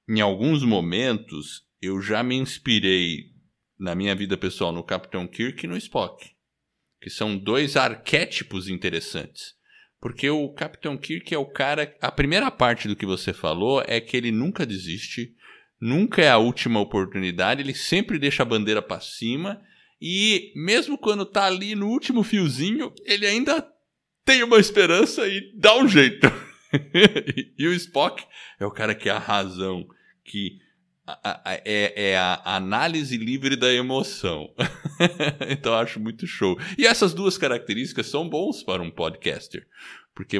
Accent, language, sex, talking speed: Brazilian, Portuguese, male, 155 wpm